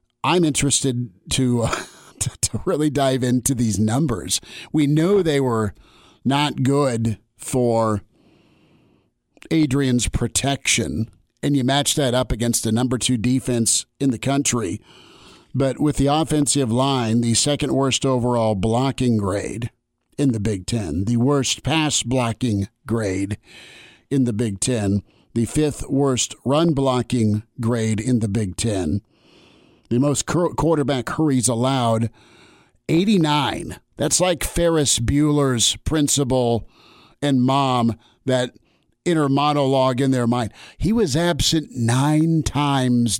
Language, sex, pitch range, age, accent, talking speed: English, male, 115-145 Hz, 50-69, American, 120 wpm